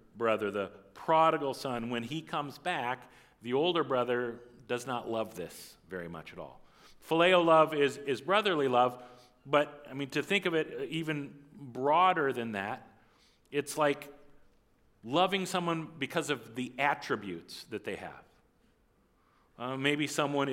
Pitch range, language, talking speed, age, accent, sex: 125-160 Hz, English, 145 wpm, 40-59, American, male